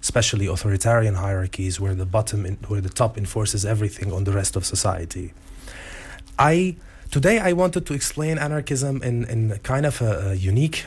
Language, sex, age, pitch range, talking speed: English, male, 30-49, 95-125 Hz, 170 wpm